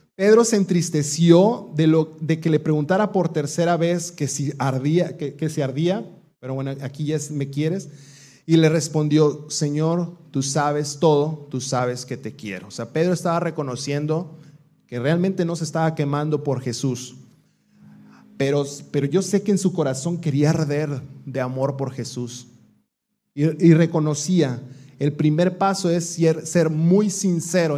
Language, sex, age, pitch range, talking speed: Spanish, male, 30-49, 135-160 Hz, 165 wpm